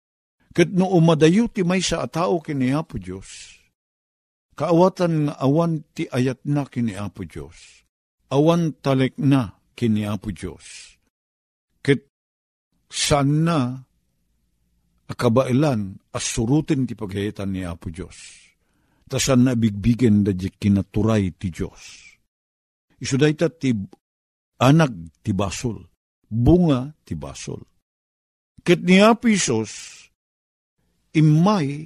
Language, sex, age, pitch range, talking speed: Filipino, male, 50-69, 100-155 Hz, 90 wpm